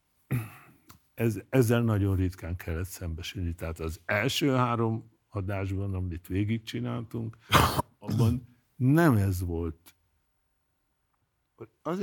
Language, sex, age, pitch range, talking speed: Hungarian, male, 60-79, 85-115 Hz, 90 wpm